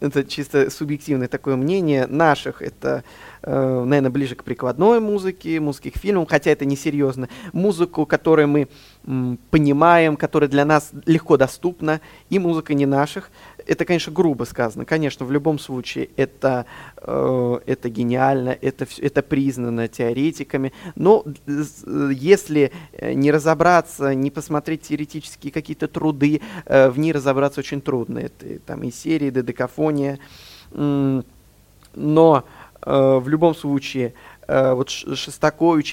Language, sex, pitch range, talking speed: Russian, male, 130-155 Hz, 120 wpm